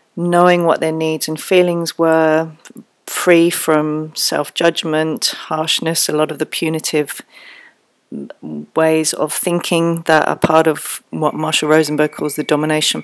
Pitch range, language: 150-165 Hz, English